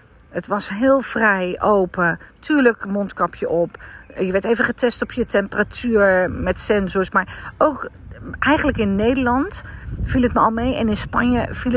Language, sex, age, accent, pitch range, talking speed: Dutch, female, 50-69, Dutch, 190-245 Hz, 160 wpm